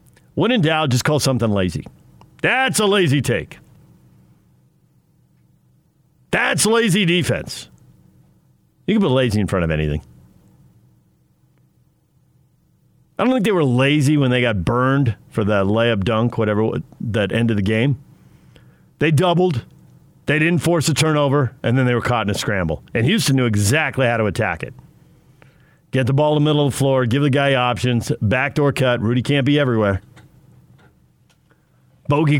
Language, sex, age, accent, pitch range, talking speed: English, male, 50-69, American, 115-145 Hz, 155 wpm